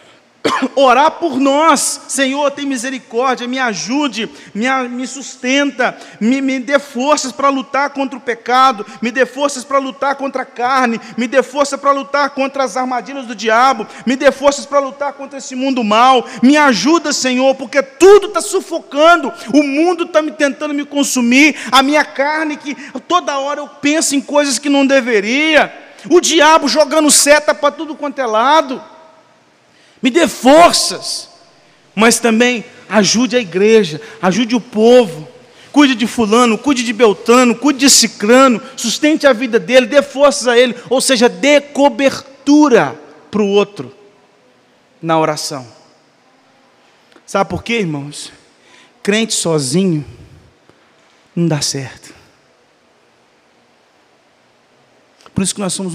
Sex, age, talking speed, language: male, 40-59, 145 wpm, Portuguese